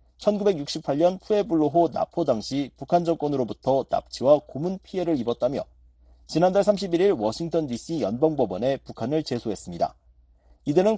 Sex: male